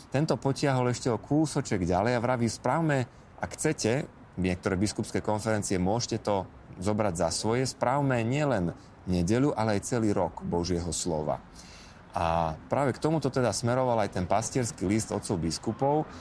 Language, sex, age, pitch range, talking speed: Slovak, male, 30-49, 95-130 Hz, 155 wpm